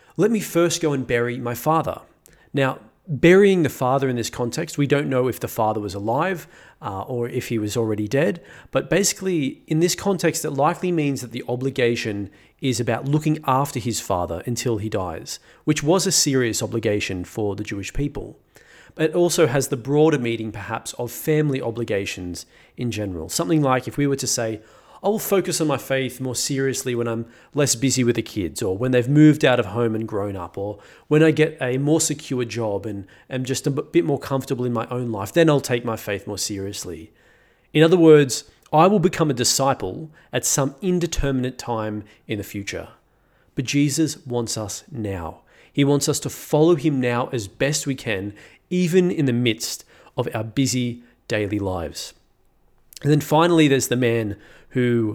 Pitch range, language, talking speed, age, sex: 115-150 Hz, English, 195 wpm, 30-49, male